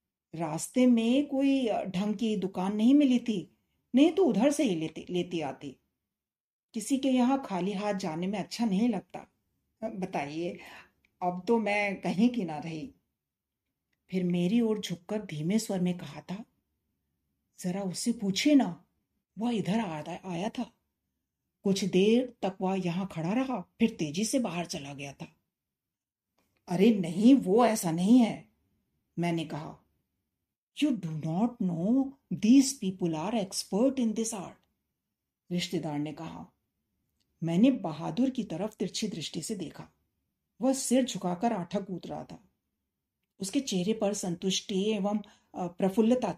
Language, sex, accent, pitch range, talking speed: Hindi, female, native, 175-235 Hz, 125 wpm